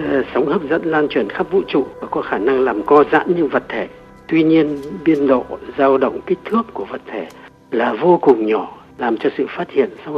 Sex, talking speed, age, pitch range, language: male, 230 wpm, 60-79, 130-190 Hz, Vietnamese